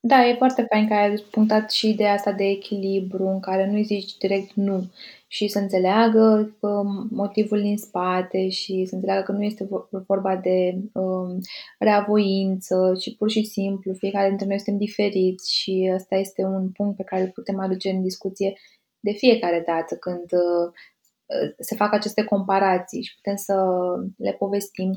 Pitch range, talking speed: 190-210 Hz, 165 wpm